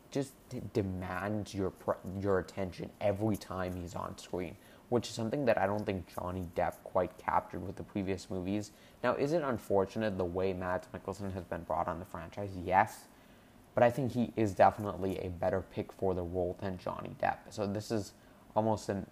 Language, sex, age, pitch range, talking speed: English, male, 20-39, 90-105 Hz, 190 wpm